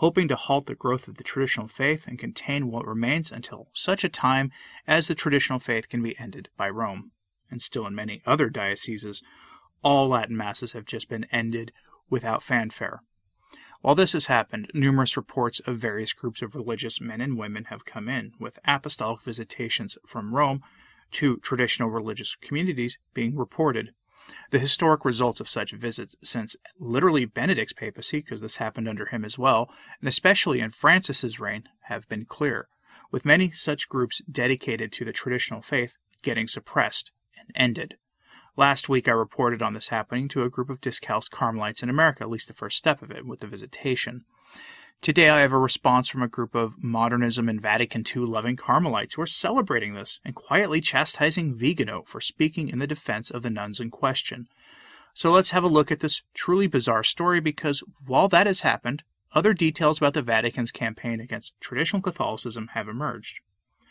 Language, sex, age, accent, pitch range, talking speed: English, male, 30-49, American, 115-145 Hz, 180 wpm